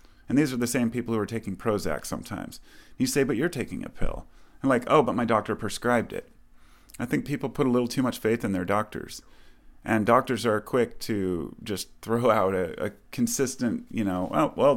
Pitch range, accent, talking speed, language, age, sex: 95-120 Hz, American, 215 wpm, English, 30-49, male